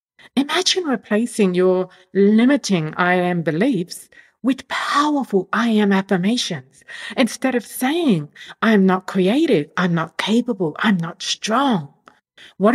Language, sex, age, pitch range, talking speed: English, female, 50-69, 180-245 Hz, 120 wpm